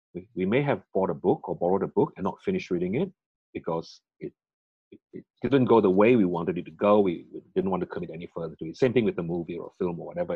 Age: 30-49